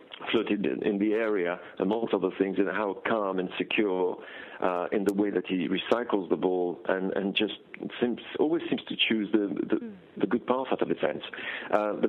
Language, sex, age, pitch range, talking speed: English, male, 50-69, 95-125 Hz, 195 wpm